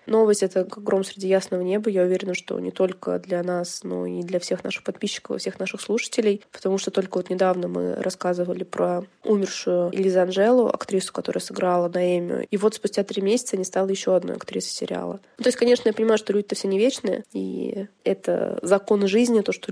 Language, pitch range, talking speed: Russian, 180-205 Hz, 205 wpm